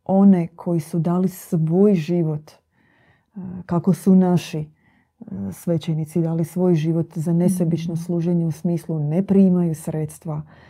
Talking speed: 120 wpm